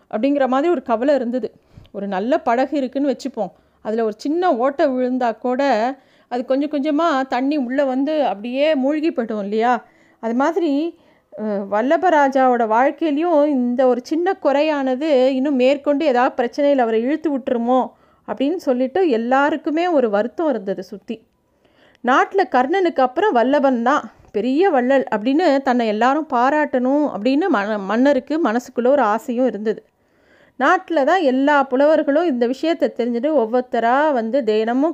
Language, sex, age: Tamil, female, 30-49